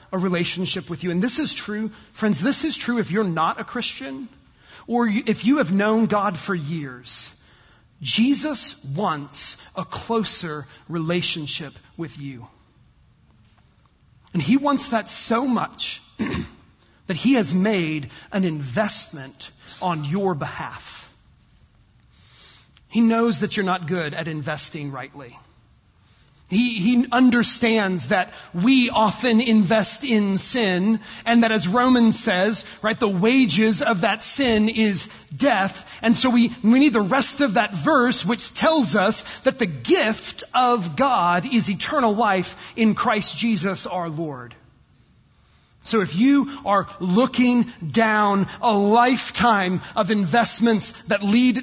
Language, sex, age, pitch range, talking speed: English, male, 40-59, 170-235 Hz, 135 wpm